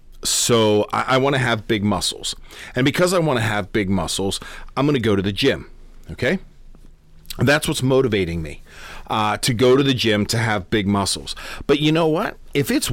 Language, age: English, 40-59